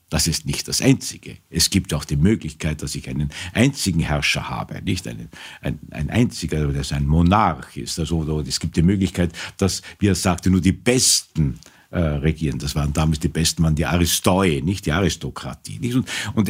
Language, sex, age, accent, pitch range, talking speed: German, male, 50-69, Austrian, 80-110 Hz, 200 wpm